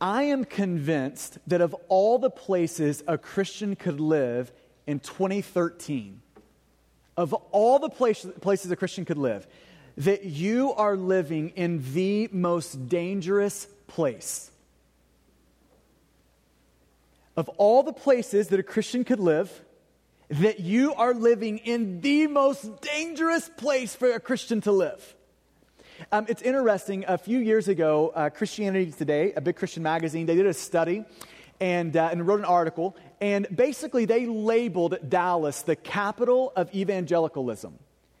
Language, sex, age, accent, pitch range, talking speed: English, male, 30-49, American, 170-230 Hz, 135 wpm